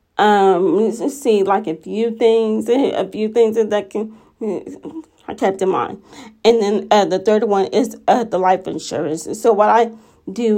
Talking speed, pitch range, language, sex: 175 wpm, 195-230 Hz, English, female